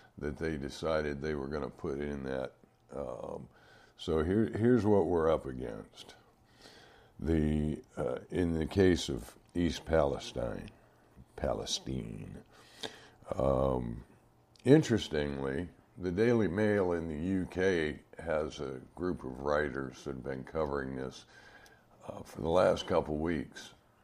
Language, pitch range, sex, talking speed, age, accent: English, 70-90 Hz, male, 125 wpm, 60-79, American